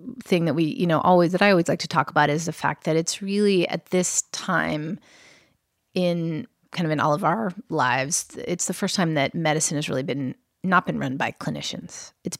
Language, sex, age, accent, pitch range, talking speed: English, female, 30-49, American, 160-190 Hz, 220 wpm